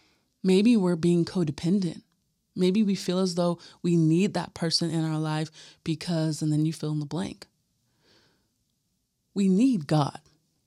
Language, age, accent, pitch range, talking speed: English, 30-49, American, 160-195 Hz, 150 wpm